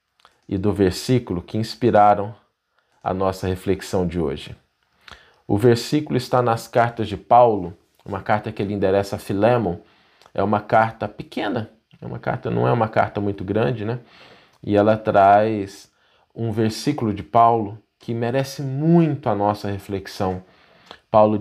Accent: Brazilian